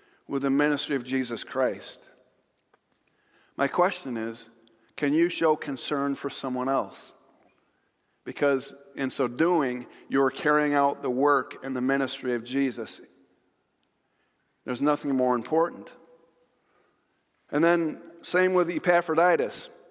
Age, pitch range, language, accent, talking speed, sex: 40-59, 135-175 Hz, English, American, 120 wpm, male